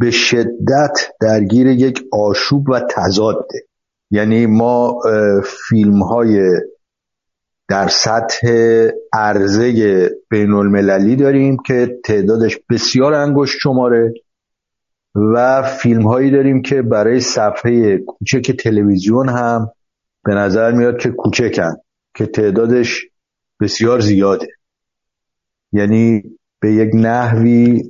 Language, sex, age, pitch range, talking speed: Persian, male, 50-69, 105-130 Hz, 95 wpm